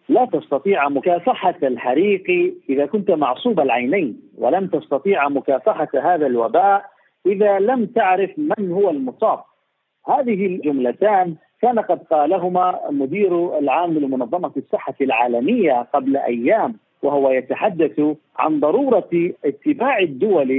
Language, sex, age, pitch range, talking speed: Arabic, male, 50-69, 145-200 Hz, 110 wpm